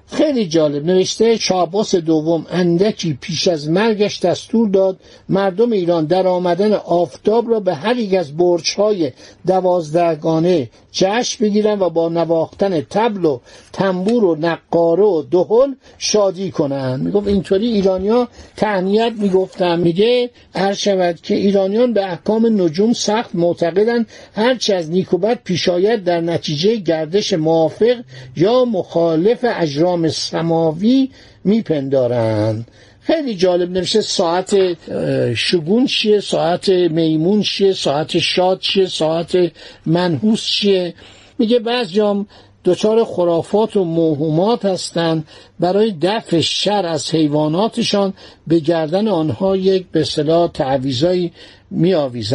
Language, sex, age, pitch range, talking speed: Persian, male, 60-79, 165-205 Hz, 115 wpm